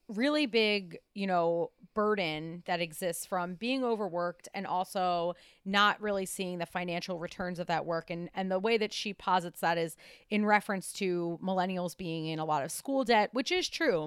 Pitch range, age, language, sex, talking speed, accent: 175-215 Hz, 30-49, English, female, 190 wpm, American